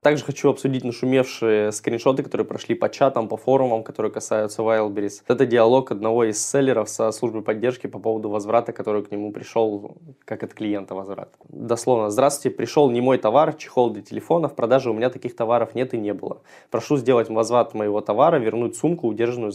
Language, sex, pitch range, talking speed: Russian, male, 110-135 Hz, 185 wpm